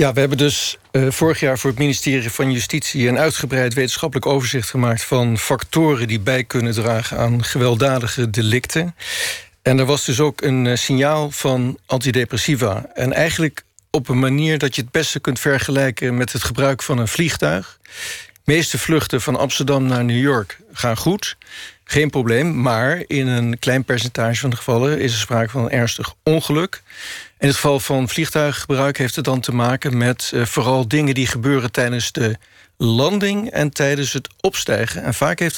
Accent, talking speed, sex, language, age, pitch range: Dutch, 175 wpm, male, Dutch, 50-69, 125-155 Hz